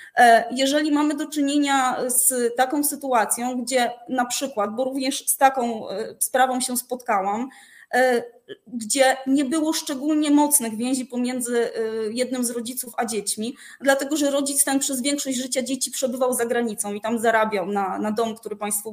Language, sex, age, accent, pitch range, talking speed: Polish, female, 20-39, native, 240-290 Hz, 150 wpm